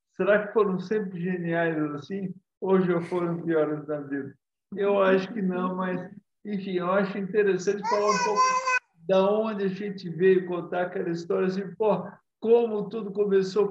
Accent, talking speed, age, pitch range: Brazilian, 160 wpm, 50-69, 155-190 Hz